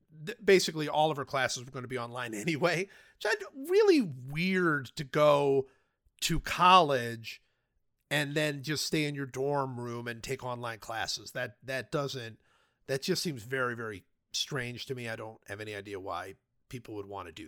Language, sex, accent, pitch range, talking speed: English, male, American, 120-170 Hz, 180 wpm